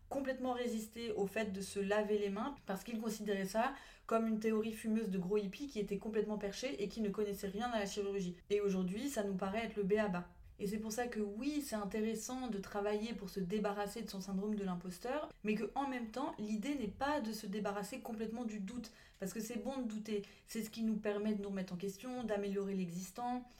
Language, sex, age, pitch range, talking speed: French, female, 30-49, 200-235 Hz, 225 wpm